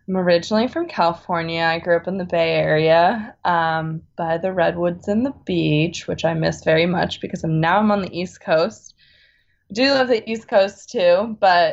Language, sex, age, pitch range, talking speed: English, female, 20-39, 160-190 Hz, 195 wpm